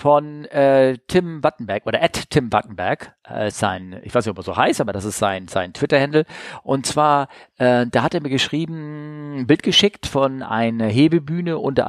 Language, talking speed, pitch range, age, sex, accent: German, 185 wpm, 105-135 Hz, 40-59, male, German